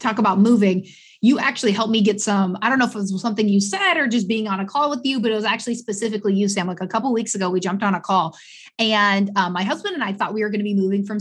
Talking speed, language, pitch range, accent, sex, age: 310 wpm, English, 195-245 Hz, American, female, 20-39